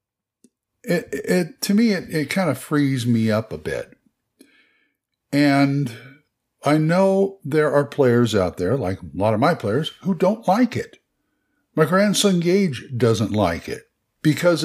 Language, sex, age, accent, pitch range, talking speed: English, male, 60-79, American, 125-165 Hz, 155 wpm